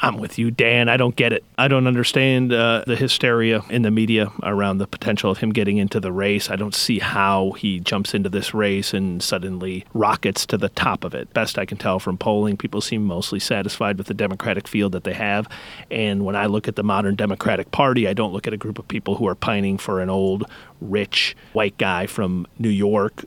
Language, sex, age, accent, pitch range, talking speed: English, male, 40-59, American, 100-115 Hz, 230 wpm